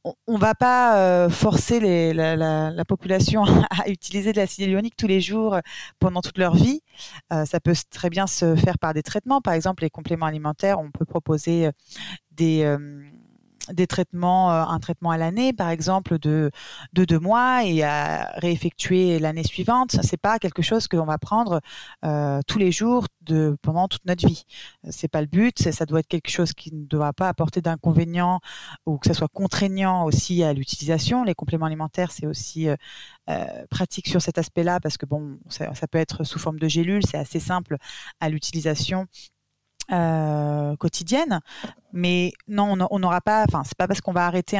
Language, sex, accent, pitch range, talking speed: French, female, French, 160-185 Hz, 195 wpm